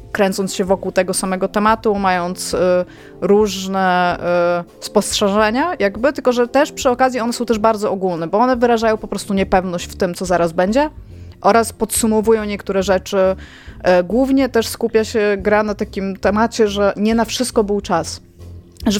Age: 20-39